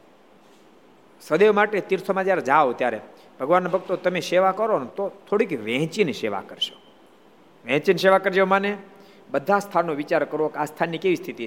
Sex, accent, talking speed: male, native, 155 wpm